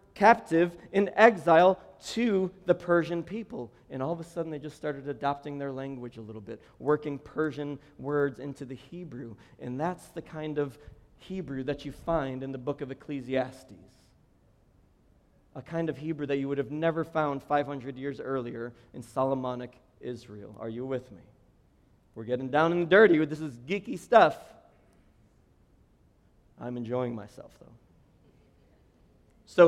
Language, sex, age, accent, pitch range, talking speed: English, male, 40-59, American, 140-180 Hz, 150 wpm